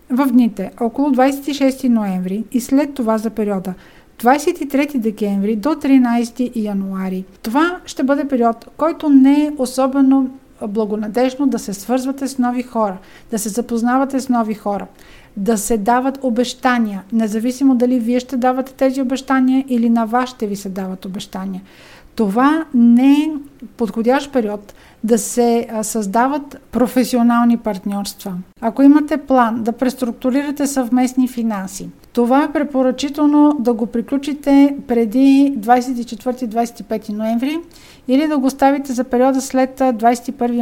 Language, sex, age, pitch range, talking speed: Bulgarian, female, 50-69, 225-270 Hz, 130 wpm